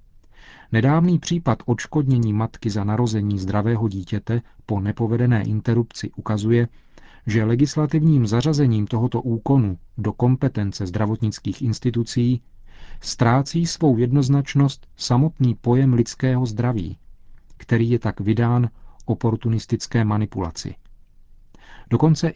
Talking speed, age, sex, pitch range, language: 95 wpm, 40-59, male, 105-125 Hz, Czech